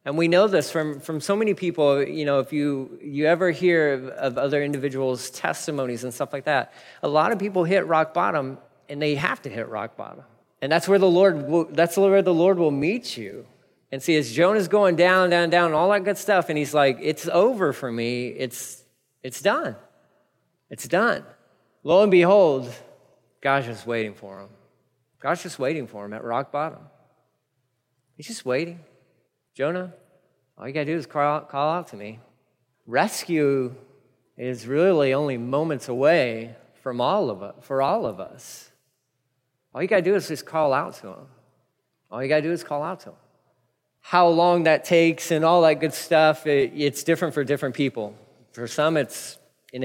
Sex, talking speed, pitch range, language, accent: male, 195 wpm, 130-170 Hz, English, American